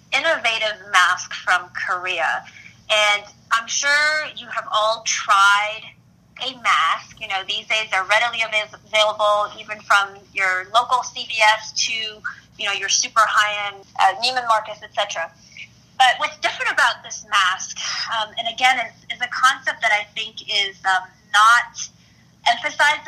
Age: 20-39